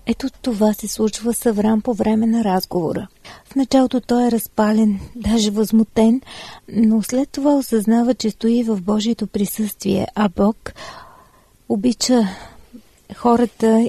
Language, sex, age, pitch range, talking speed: Bulgarian, female, 40-59, 210-235 Hz, 130 wpm